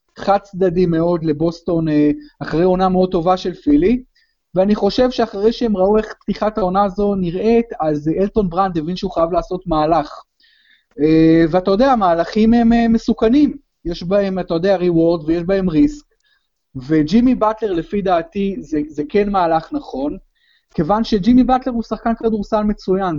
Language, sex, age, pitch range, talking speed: Hebrew, male, 30-49, 170-230 Hz, 145 wpm